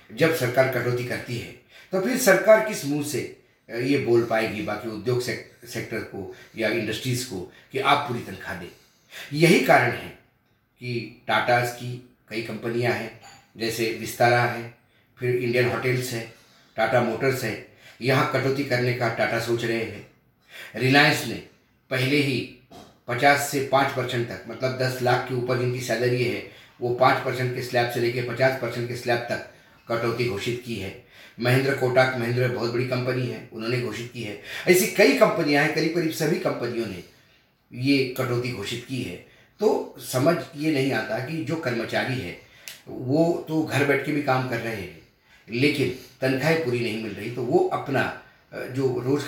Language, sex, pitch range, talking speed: Hindi, male, 120-140 Hz, 170 wpm